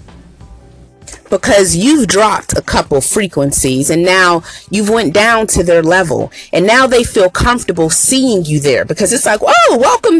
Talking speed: 160 wpm